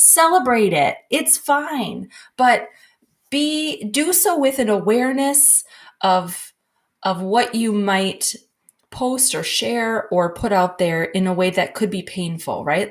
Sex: female